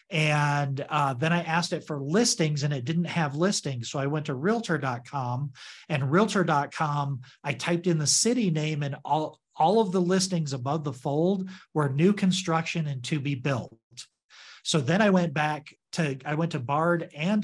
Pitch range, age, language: 140-165 Hz, 40-59, English